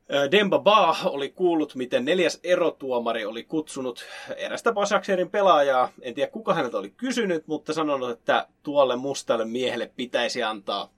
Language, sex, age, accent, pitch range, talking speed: Finnish, male, 30-49, native, 140-235 Hz, 140 wpm